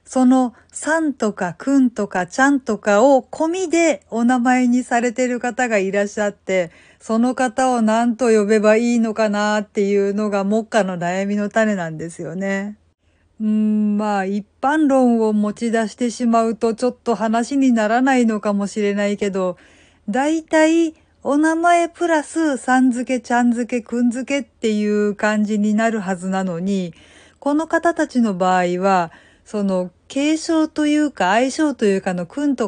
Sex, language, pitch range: female, Japanese, 205-270 Hz